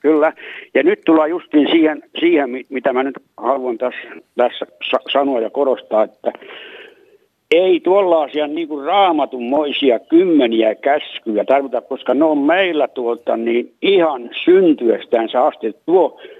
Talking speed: 130 wpm